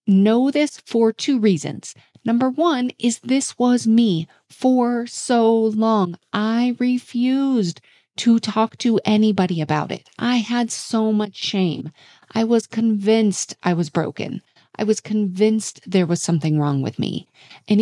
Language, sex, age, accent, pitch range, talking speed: English, female, 40-59, American, 180-230 Hz, 145 wpm